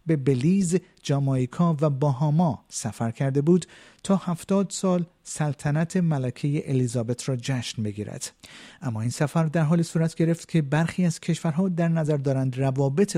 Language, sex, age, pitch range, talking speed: Persian, male, 50-69, 130-165 Hz, 145 wpm